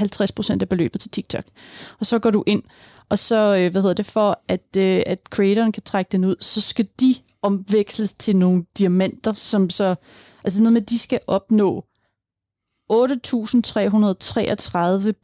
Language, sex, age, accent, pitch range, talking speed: Danish, female, 30-49, native, 185-220 Hz, 160 wpm